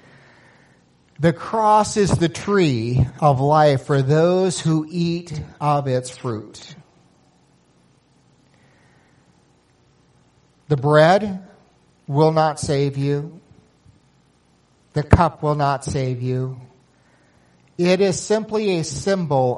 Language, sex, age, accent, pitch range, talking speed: English, male, 50-69, American, 125-165 Hz, 95 wpm